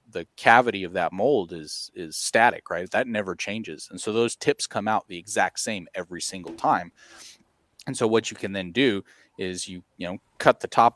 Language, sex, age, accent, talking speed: English, male, 30-49, American, 210 wpm